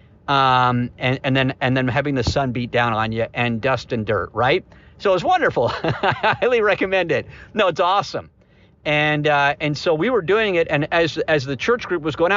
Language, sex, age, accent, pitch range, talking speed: English, male, 50-69, American, 125-160 Hz, 220 wpm